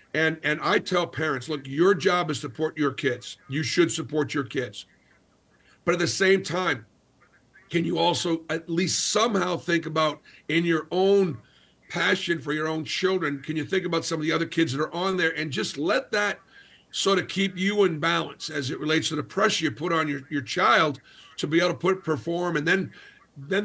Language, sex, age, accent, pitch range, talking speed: English, male, 50-69, American, 155-190 Hz, 210 wpm